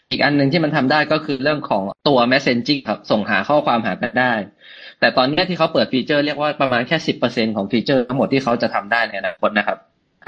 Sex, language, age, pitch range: male, Thai, 20-39, 115-150 Hz